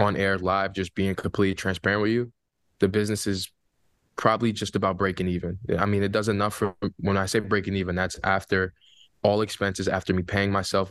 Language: English